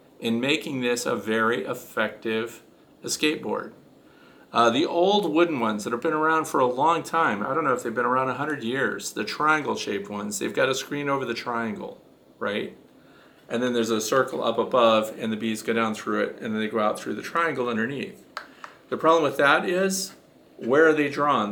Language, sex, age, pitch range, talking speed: English, male, 50-69, 115-145 Hz, 200 wpm